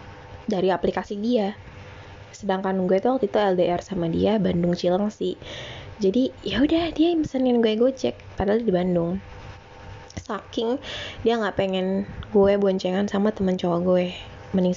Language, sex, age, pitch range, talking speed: Indonesian, female, 20-39, 175-215 Hz, 140 wpm